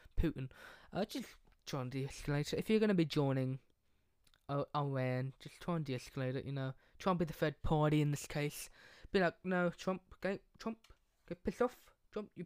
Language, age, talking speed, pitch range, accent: English, 20-39, 200 wpm, 130-180 Hz, British